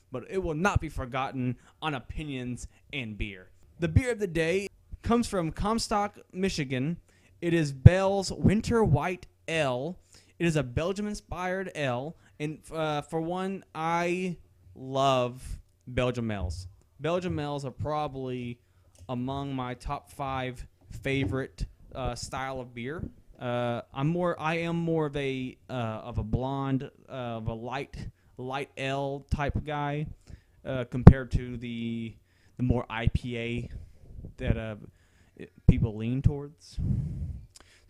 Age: 20-39